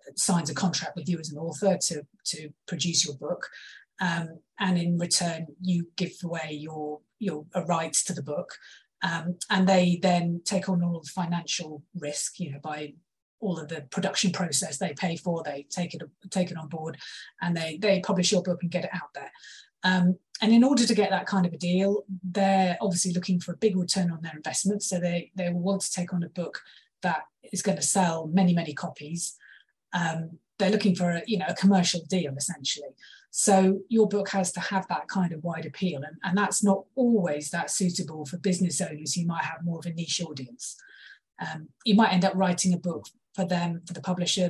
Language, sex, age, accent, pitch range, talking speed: English, female, 30-49, British, 165-190 Hz, 210 wpm